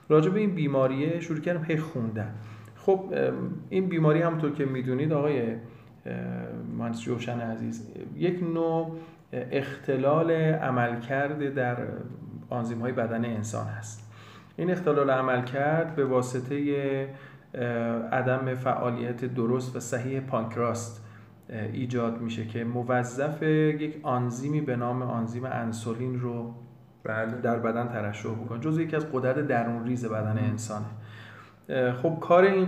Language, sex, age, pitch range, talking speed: Persian, male, 40-59, 115-150 Hz, 120 wpm